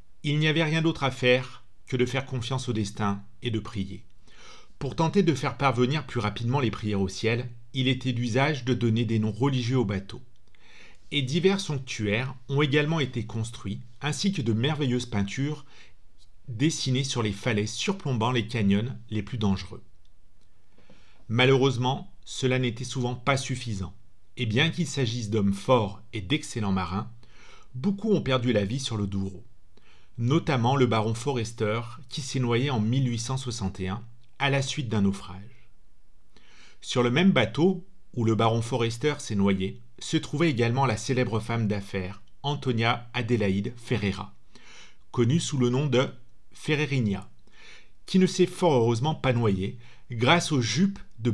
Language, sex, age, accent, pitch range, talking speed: French, male, 40-59, French, 110-140 Hz, 155 wpm